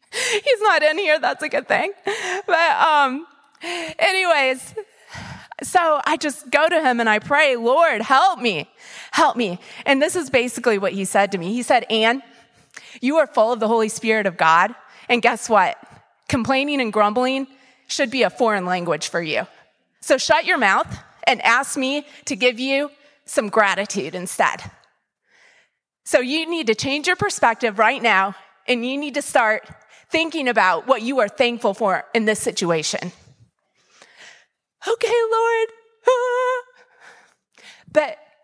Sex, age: female, 30-49